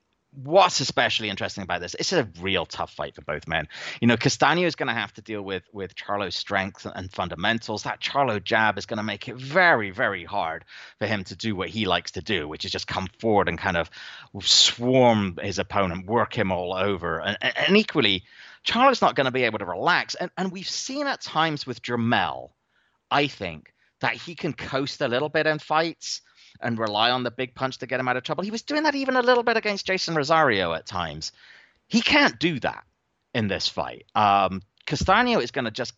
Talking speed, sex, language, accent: 220 wpm, male, English, British